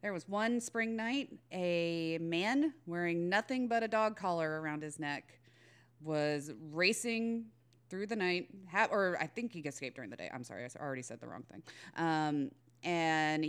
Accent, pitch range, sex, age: American, 140-190 Hz, female, 30-49